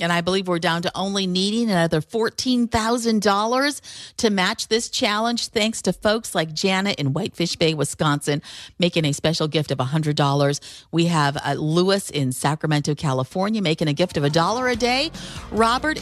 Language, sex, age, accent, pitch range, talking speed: English, female, 40-59, American, 165-225 Hz, 165 wpm